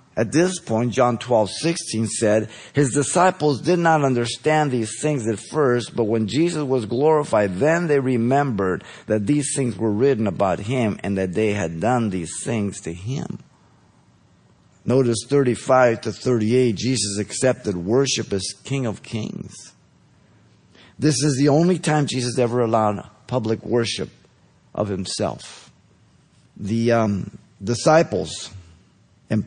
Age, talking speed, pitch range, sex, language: 50-69, 135 wpm, 105-140 Hz, male, English